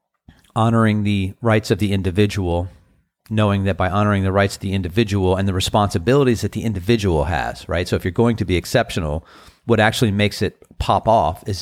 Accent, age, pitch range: American, 40-59, 95-115 Hz